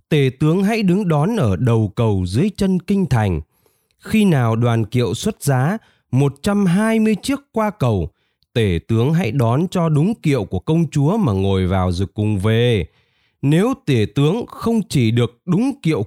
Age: 20-39